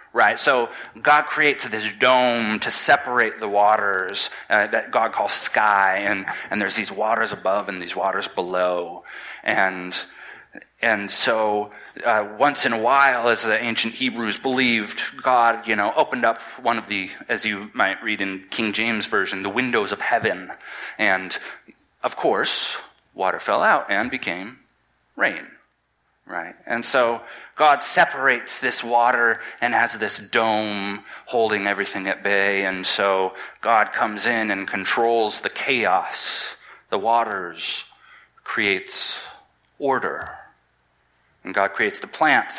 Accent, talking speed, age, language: American, 140 wpm, 30-49, English